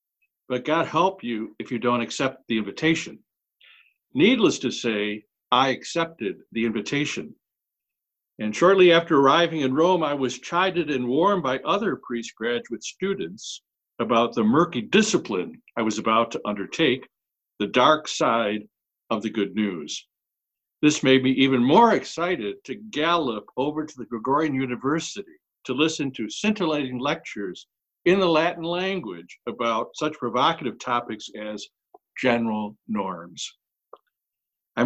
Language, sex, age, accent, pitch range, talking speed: English, male, 60-79, American, 120-170 Hz, 135 wpm